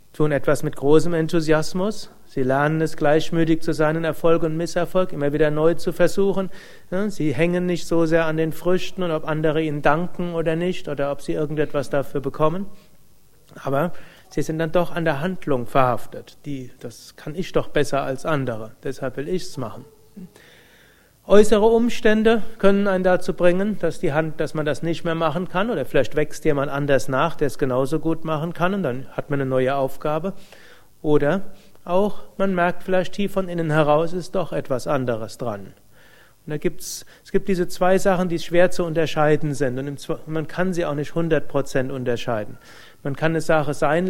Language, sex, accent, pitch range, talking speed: German, male, German, 145-180 Hz, 180 wpm